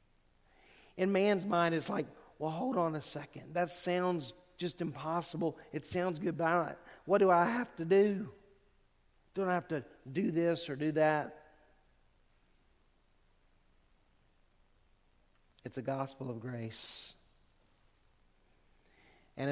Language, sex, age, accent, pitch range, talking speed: English, male, 50-69, American, 115-155 Hz, 120 wpm